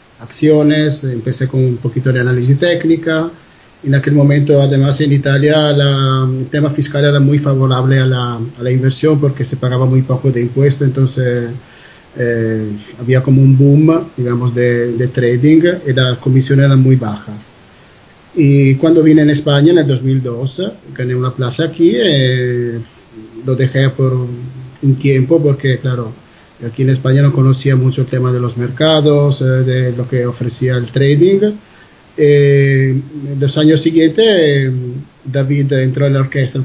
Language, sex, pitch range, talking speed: Spanish, male, 130-150 Hz, 155 wpm